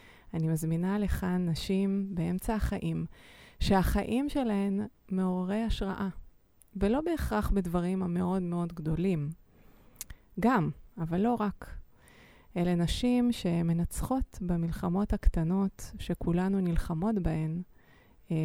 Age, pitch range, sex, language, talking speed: 20-39, 160-195 Hz, female, Hebrew, 95 wpm